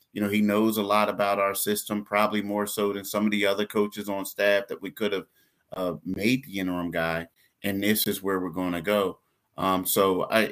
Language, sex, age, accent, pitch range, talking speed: English, male, 30-49, American, 100-115 Hz, 220 wpm